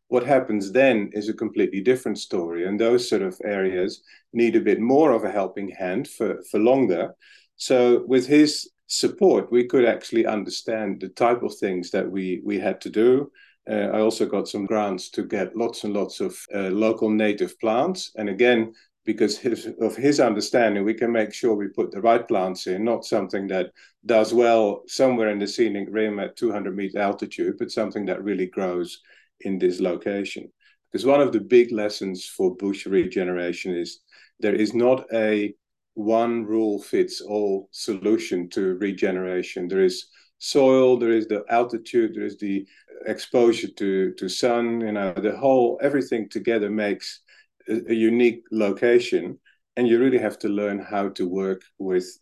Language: English